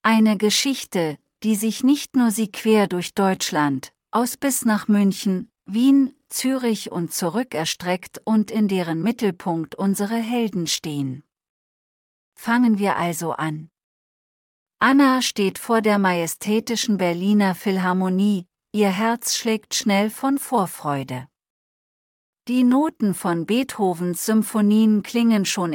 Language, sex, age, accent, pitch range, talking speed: English, female, 40-59, German, 175-230 Hz, 115 wpm